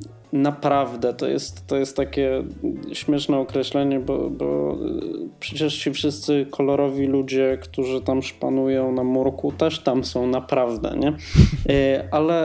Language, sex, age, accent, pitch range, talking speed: Polish, male, 20-39, native, 120-140 Hz, 125 wpm